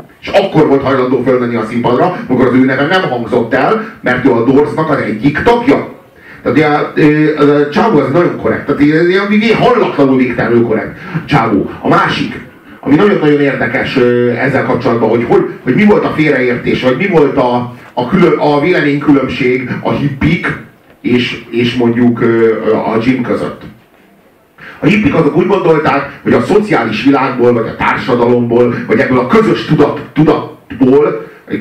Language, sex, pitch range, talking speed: Hungarian, male, 120-150 Hz, 165 wpm